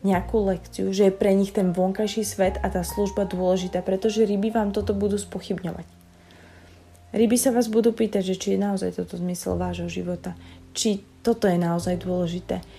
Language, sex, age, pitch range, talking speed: Slovak, female, 20-39, 170-205 Hz, 175 wpm